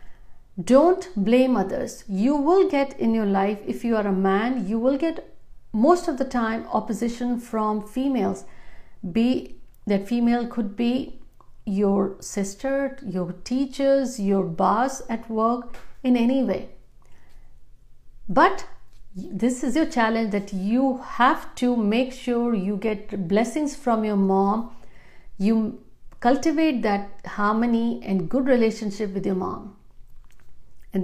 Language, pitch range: Hindi, 200-255 Hz